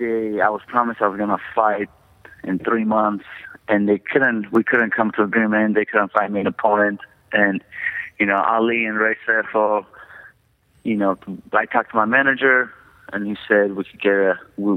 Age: 30-49